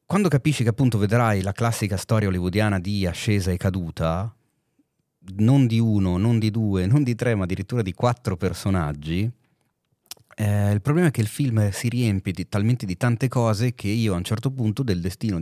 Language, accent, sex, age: Italian, native, male, 30-49